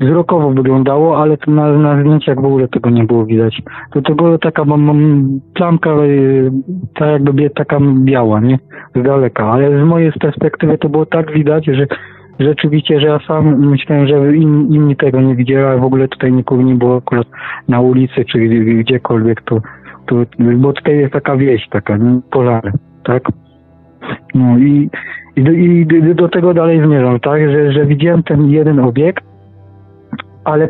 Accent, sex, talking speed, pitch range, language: native, male, 170 wpm, 130-160 Hz, Polish